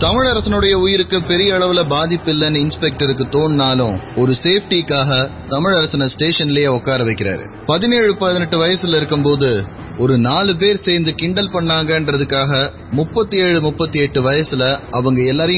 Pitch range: 130-170 Hz